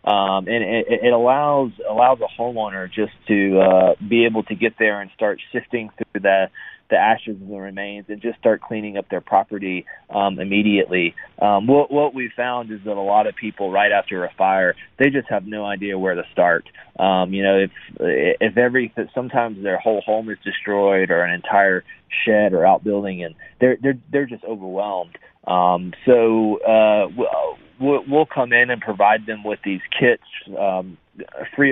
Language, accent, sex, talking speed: English, American, male, 185 wpm